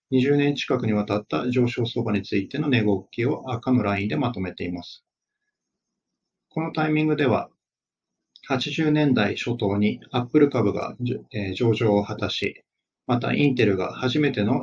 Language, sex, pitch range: Japanese, male, 105-135 Hz